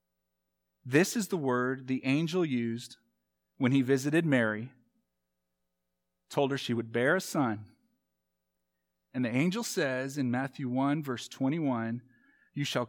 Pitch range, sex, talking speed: 95-145 Hz, male, 135 wpm